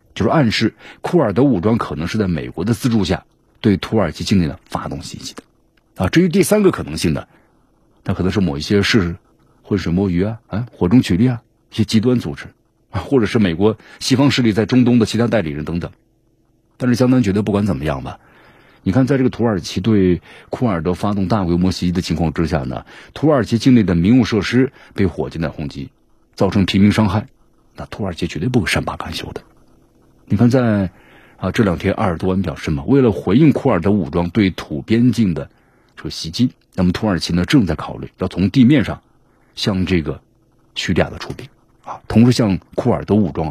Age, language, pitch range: 50-69, Chinese, 85-115 Hz